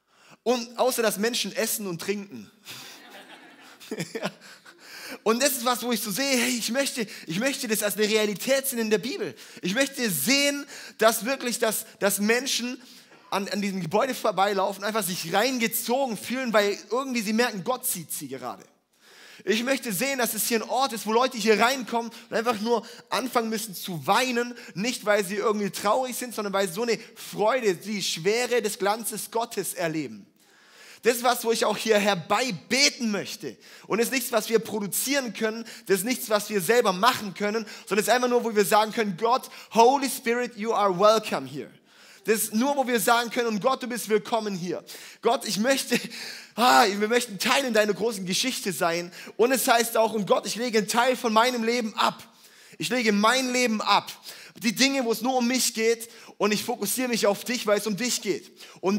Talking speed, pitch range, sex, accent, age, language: 200 wpm, 205-245 Hz, male, German, 30-49, German